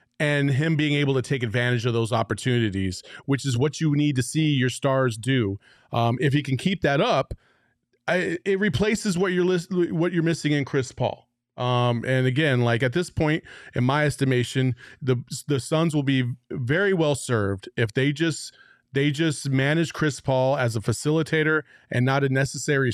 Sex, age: male, 30-49